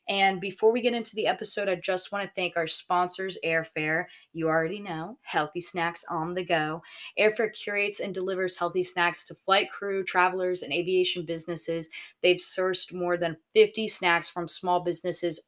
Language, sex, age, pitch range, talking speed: English, female, 20-39, 160-185 Hz, 175 wpm